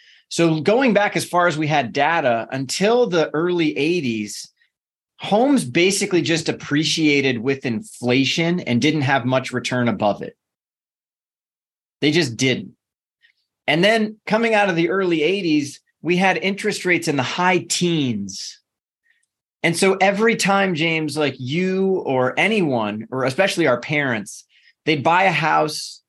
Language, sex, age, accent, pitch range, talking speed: English, male, 30-49, American, 140-185 Hz, 145 wpm